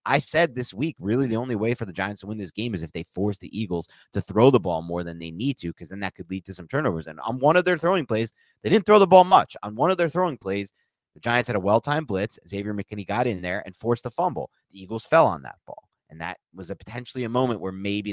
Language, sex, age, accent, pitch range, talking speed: English, male, 30-49, American, 95-140 Hz, 290 wpm